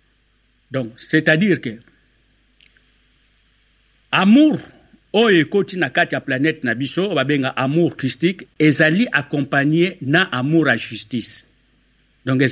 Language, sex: English, male